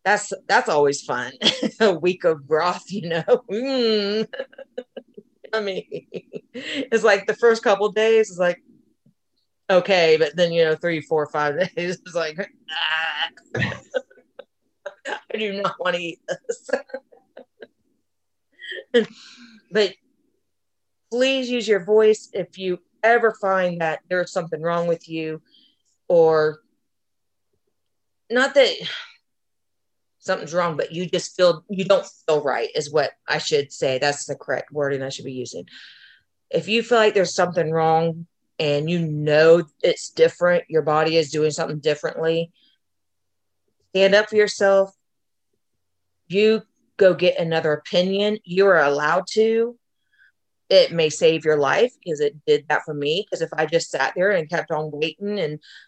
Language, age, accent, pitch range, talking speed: English, 30-49, American, 160-225 Hz, 145 wpm